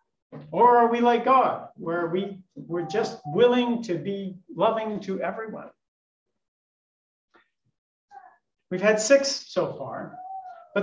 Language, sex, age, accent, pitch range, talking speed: English, male, 50-69, American, 200-275 Hz, 115 wpm